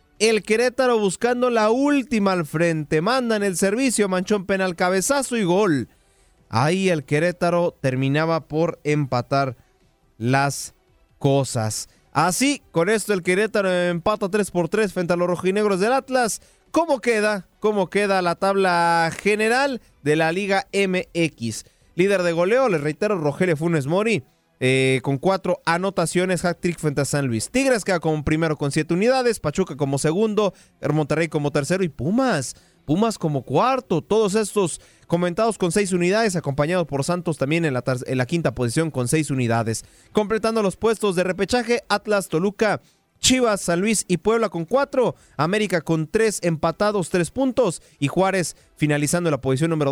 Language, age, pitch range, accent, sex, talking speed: Spanish, 30-49, 150-210 Hz, Mexican, male, 155 wpm